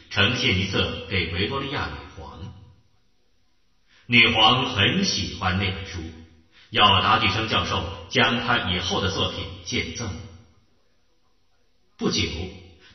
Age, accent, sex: 40-59, native, male